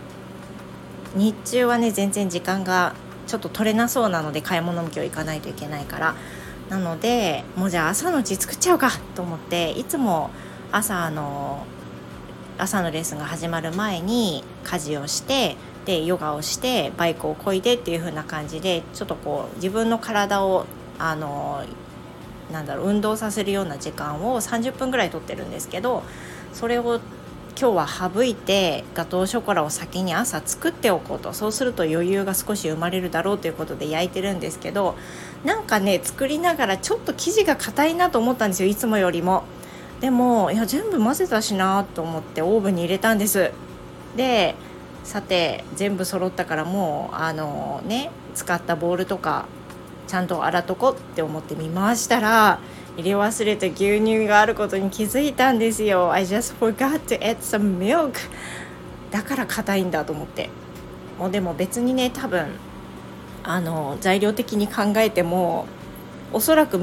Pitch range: 160-220 Hz